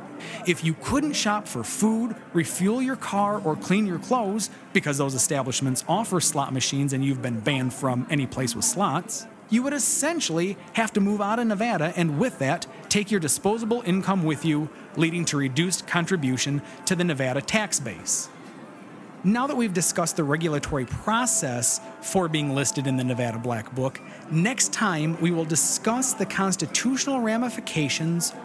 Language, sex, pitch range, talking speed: English, male, 150-215 Hz, 165 wpm